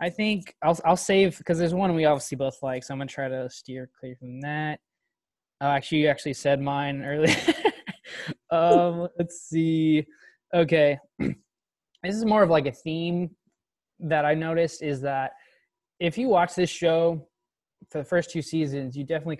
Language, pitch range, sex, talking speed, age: English, 140-170 Hz, male, 175 wpm, 20-39